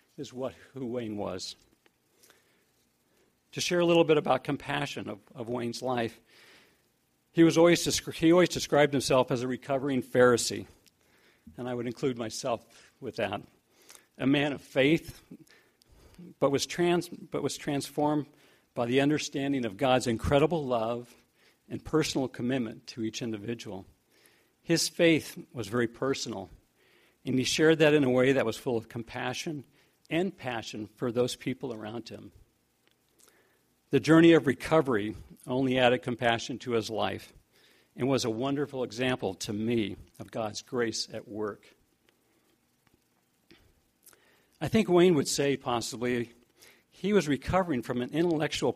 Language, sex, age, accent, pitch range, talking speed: English, male, 50-69, American, 115-145 Hz, 140 wpm